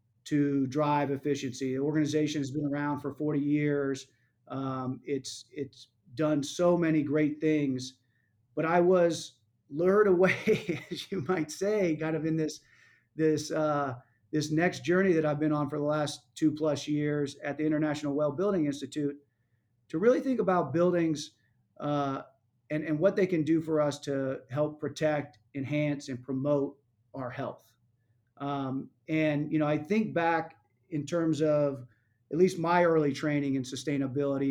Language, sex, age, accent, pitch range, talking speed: English, male, 40-59, American, 135-155 Hz, 160 wpm